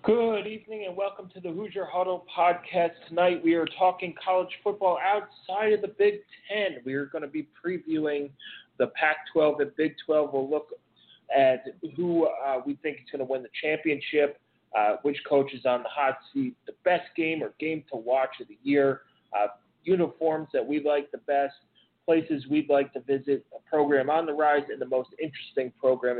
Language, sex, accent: English, male, American